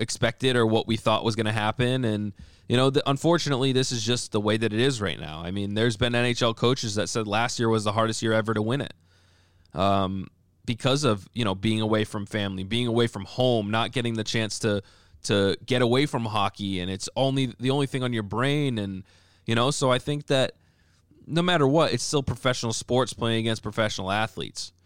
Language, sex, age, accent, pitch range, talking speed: English, male, 20-39, American, 100-130 Hz, 220 wpm